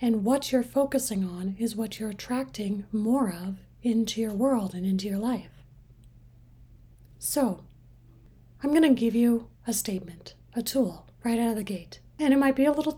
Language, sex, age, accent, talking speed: English, female, 30-49, American, 180 wpm